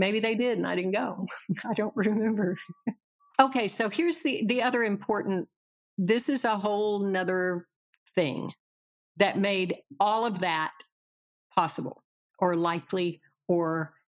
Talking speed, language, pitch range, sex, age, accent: 135 wpm, English, 170-200 Hz, female, 60-79, American